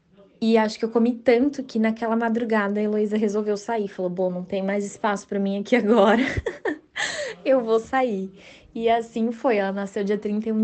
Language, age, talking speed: Portuguese, 20-39, 185 wpm